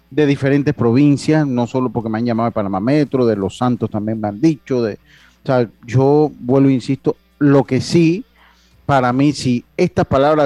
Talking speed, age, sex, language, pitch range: 200 wpm, 40-59, male, Spanish, 110-135 Hz